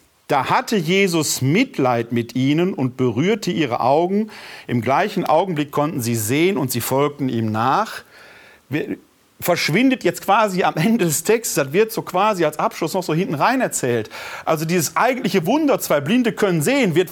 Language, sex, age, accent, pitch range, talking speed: German, male, 40-59, German, 135-195 Hz, 170 wpm